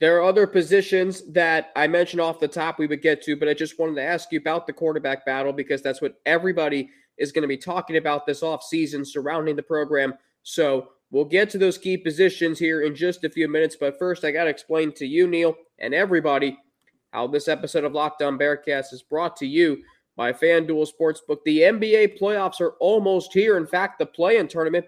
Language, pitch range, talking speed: English, 155-180 Hz, 210 wpm